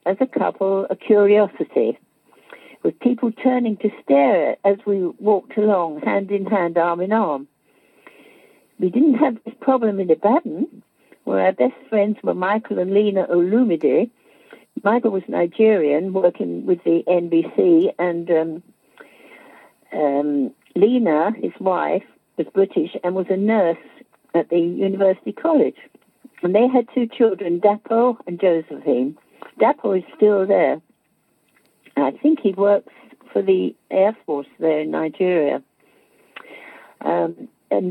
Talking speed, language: 135 wpm, English